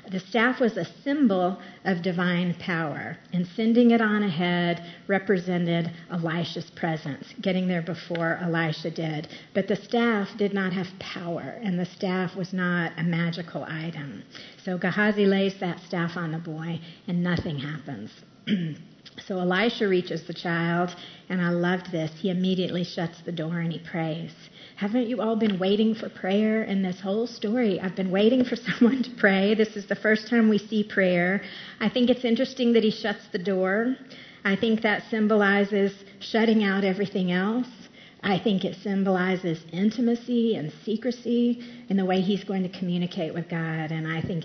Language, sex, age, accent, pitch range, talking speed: English, female, 50-69, American, 175-210 Hz, 170 wpm